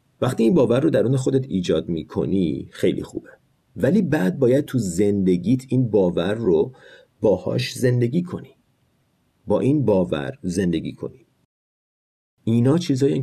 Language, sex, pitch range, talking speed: Persian, male, 100-140 Hz, 135 wpm